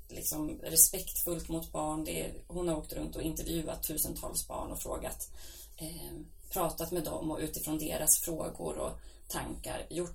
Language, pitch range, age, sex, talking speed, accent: Swedish, 155-195 Hz, 20-39, female, 160 wpm, native